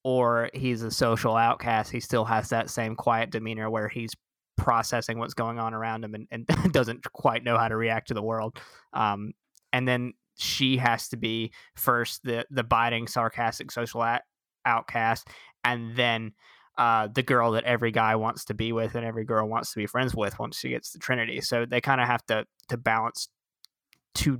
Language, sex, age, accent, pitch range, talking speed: English, male, 20-39, American, 115-125 Hz, 195 wpm